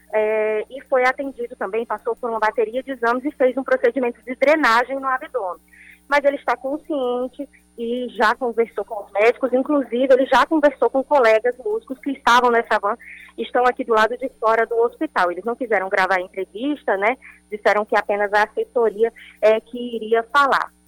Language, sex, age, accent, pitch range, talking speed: Portuguese, female, 20-39, Brazilian, 210-265 Hz, 180 wpm